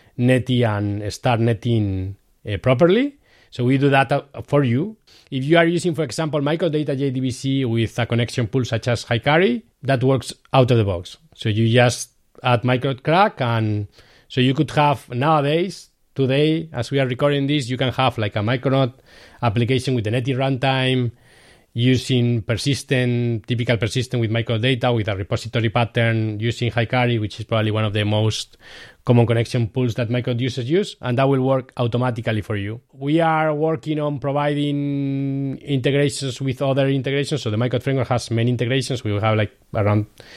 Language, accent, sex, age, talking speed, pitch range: English, Spanish, male, 30-49, 175 wpm, 115-135 Hz